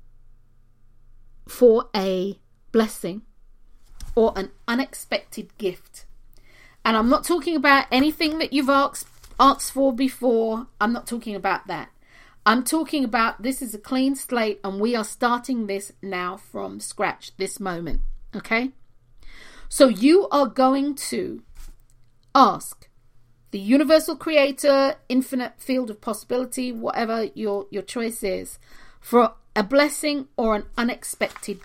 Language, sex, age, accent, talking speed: English, female, 40-59, British, 130 wpm